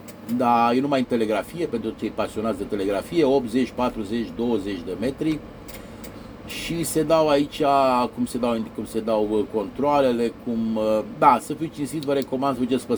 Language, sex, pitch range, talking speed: Romanian, male, 115-140 Hz, 160 wpm